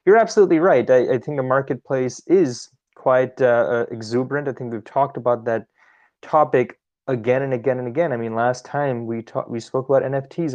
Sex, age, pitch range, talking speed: male, 20-39, 120-155 Hz, 195 wpm